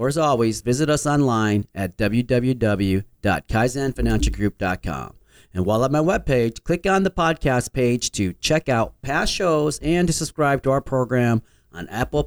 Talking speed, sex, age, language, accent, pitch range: 150 wpm, male, 40-59, English, American, 105-155 Hz